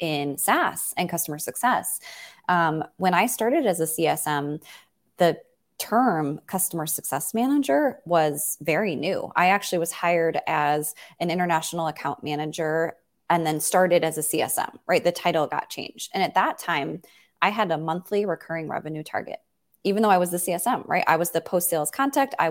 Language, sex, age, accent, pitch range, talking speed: English, female, 20-39, American, 160-205 Hz, 170 wpm